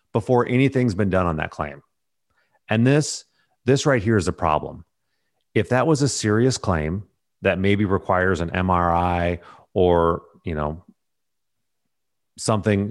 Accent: American